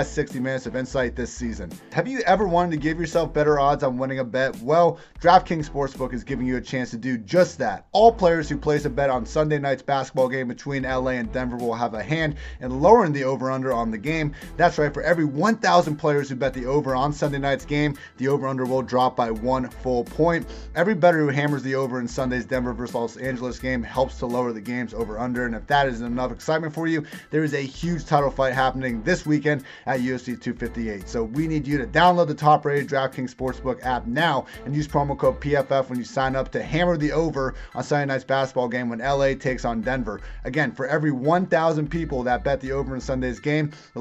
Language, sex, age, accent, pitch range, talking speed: English, male, 30-49, American, 130-150 Hz, 230 wpm